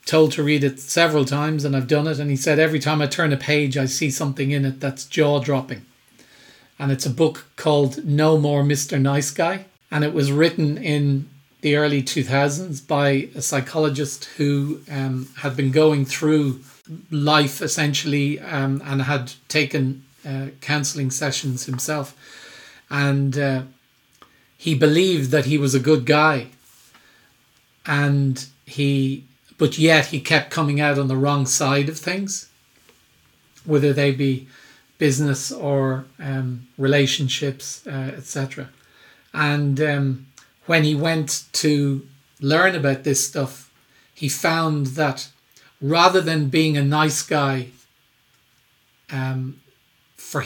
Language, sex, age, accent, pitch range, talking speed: English, male, 40-59, Irish, 135-150 Hz, 140 wpm